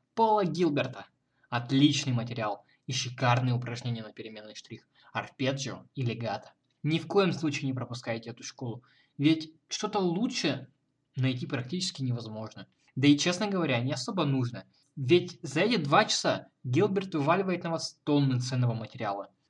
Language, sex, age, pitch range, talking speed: Russian, male, 20-39, 125-175 Hz, 140 wpm